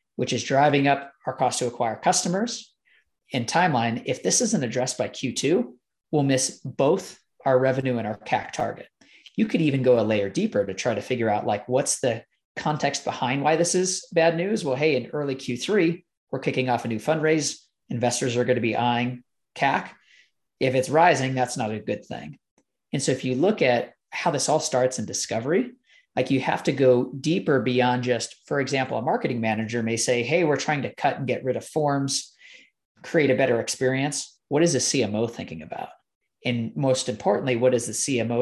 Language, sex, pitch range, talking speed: English, male, 125-145 Hz, 200 wpm